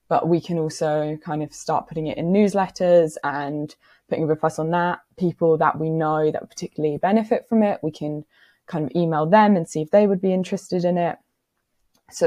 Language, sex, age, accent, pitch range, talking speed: English, female, 20-39, British, 150-175 Hz, 205 wpm